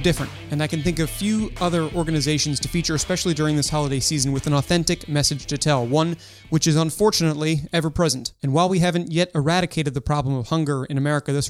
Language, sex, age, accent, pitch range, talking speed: English, male, 30-49, American, 135-170 Hz, 215 wpm